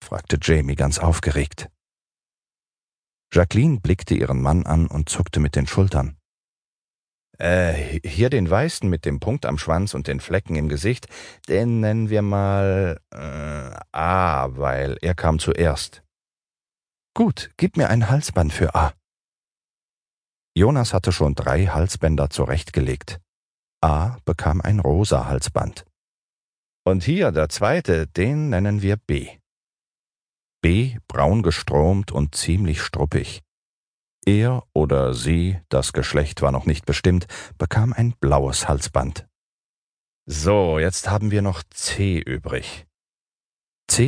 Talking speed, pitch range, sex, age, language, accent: 120 wpm, 75-100 Hz, male, 40-59, German, German